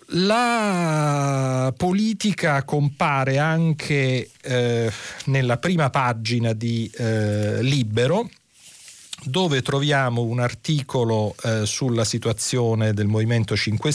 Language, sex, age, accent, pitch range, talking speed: Italian, male, 40-59, native, 110-135 Hz, 90 wpm